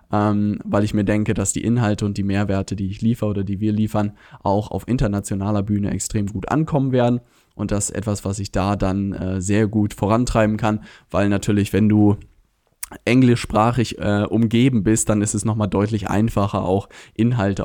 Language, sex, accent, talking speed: German, male, German, 185 wpm